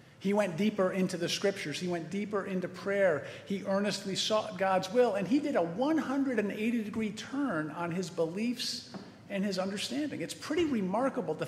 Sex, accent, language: male, American, English